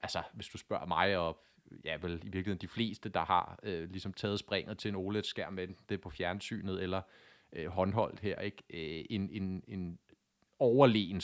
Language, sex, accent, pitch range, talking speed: Danish, male, native, 100-125 Hz, 185 wpm